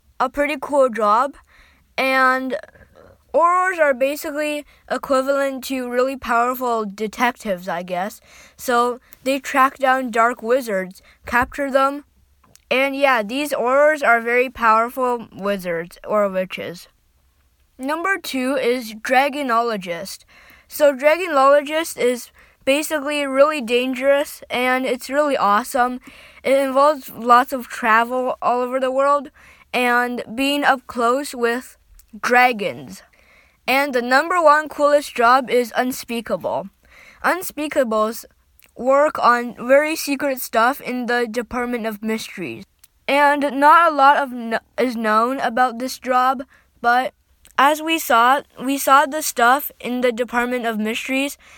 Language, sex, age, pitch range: Chinese, female, 20-39, 235-280 Hz